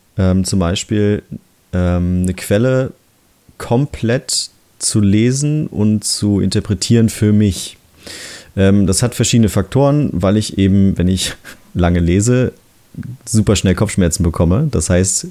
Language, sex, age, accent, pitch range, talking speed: German, male, 30-49, German, 95-110 Hz, 125 wpm